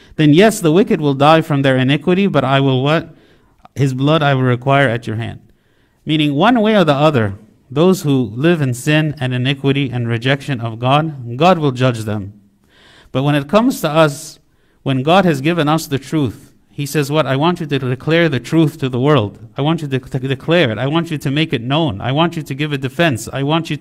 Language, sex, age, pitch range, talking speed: English, male, 50-69, 130-160 Hz, 230 wpm